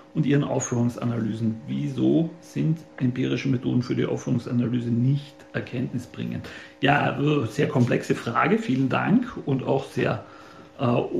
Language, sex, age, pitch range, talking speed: German, male, 40-59, 125-145 Hz, 125 wpm